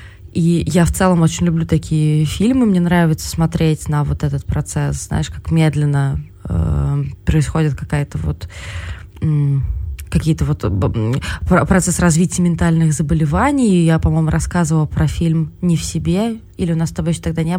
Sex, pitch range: female, 145-180 Hz